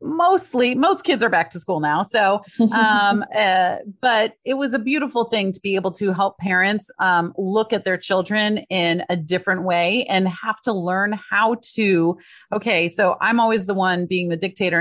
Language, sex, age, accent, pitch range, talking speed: English, female, 30-49, American, 170-215 Hz, 190 wpm